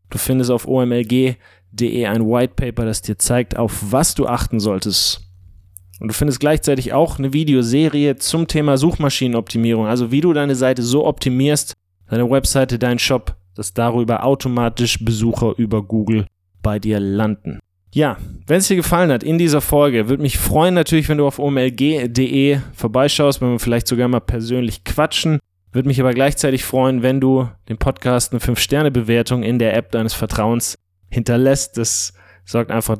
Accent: German